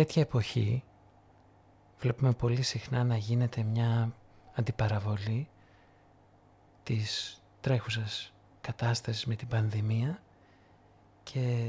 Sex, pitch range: male, 100-120 Hz